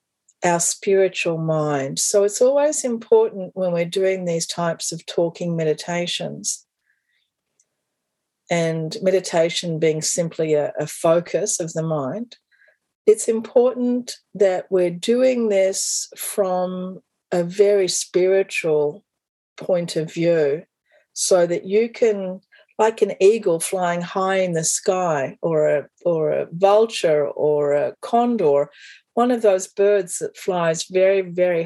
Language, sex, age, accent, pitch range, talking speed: English, female, 50-69, Australian, 170-215 Hz, 125 wpm